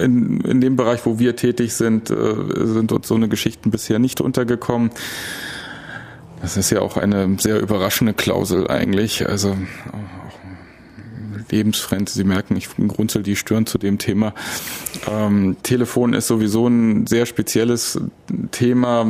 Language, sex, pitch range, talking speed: German, male, 105-120 Hz, 140 wpm